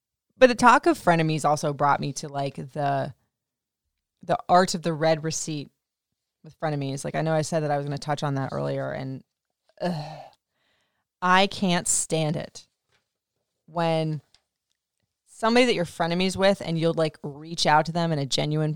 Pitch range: 150-185 Hz